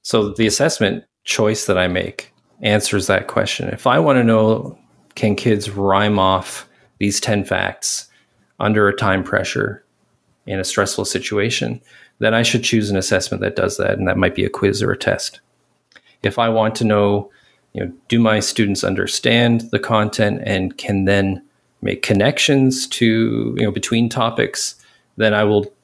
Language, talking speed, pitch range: English, 170 wpm, 95-115 Hz